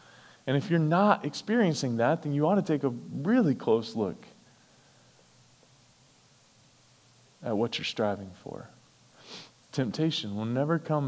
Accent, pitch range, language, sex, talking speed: American, 100-135 Hz, English, male, 130 wpm